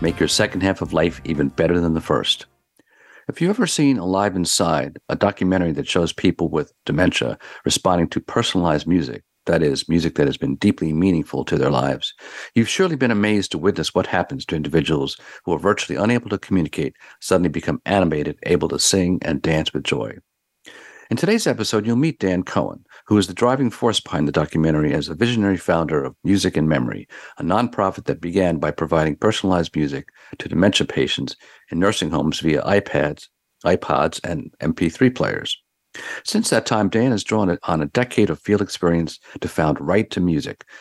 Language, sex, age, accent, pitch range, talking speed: English, male, 50-69, American, 85-110 Hz, 185 wpm